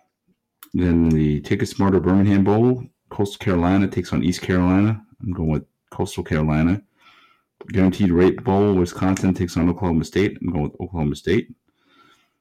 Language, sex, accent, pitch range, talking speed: English, male, American, 85-105 Hz, 145 wpm